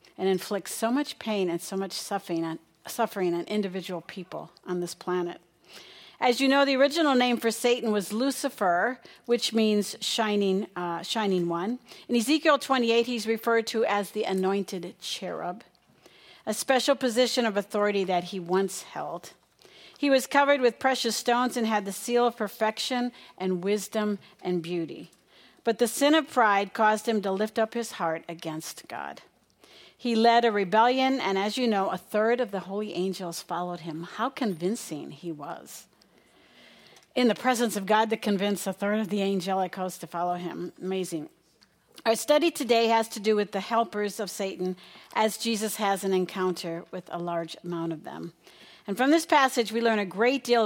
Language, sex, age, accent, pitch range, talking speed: English, female, 50-69, American, 185-235 Hz, 175 wpm